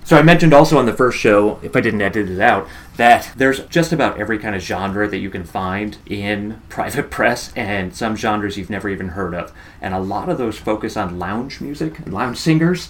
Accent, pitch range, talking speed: American, 95-110 Hz, 230 wpm